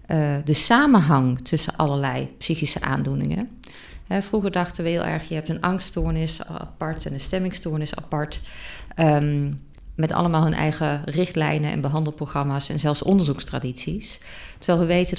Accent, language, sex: Dutch, Dutch, female